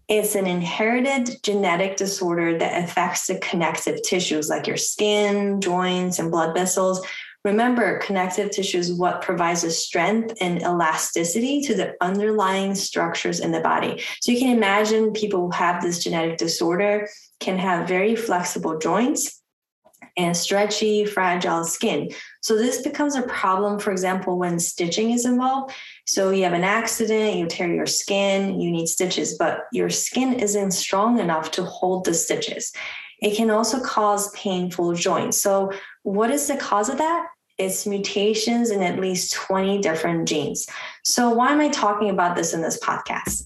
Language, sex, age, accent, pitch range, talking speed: English, female, 20-39, American, 175-215 Hz, 160 wpm